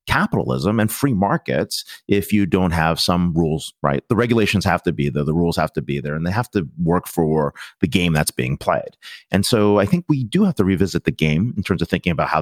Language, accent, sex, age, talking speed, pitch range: English, American, male, 30-49, 245 wpm, 85-130 Hz